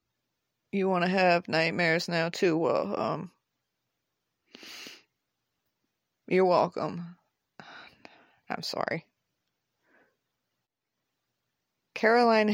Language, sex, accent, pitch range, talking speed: English, female, American, 170-210 Hz, 65 wpm